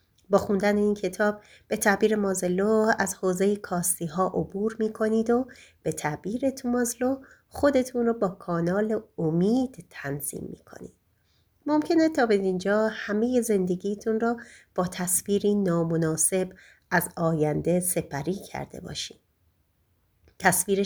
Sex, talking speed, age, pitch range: female, 125 wpm, 30-49, 170-235 Hz